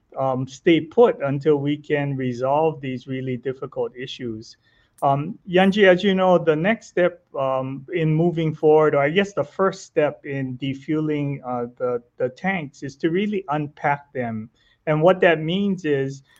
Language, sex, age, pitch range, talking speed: English, male, 30-49, 135-165 Hz, 165 wpm